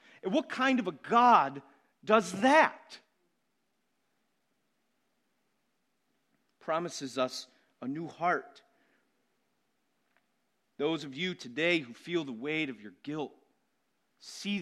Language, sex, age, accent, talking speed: English, male, 40-59, American, 105 wpm